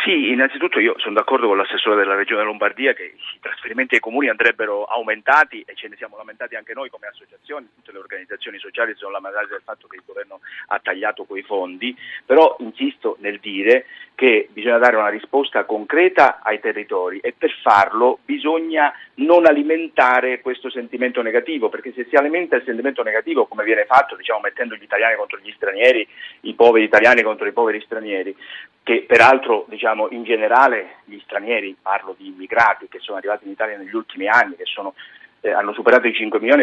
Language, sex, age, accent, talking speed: Italian, male, 40-59, native, 185 wpm